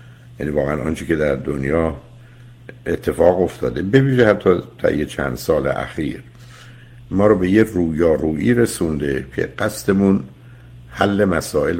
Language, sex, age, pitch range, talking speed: Persian, male, 60-79, 75-120 Hz, 125 wpm